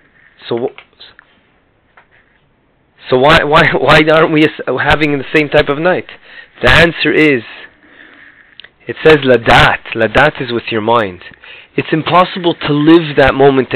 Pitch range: 140-170 Hz